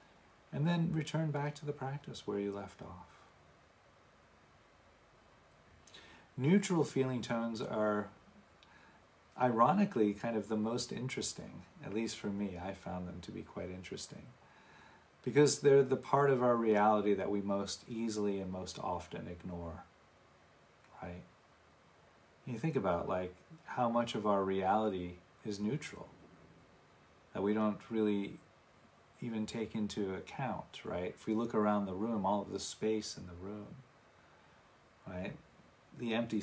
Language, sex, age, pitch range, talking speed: English, male, 40-59, 95-120 Hz, 140 wpm